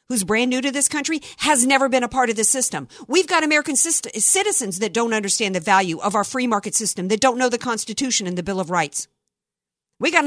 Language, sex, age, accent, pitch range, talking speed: English, female, 50-69, American, 215-290 Hz, 240 wpm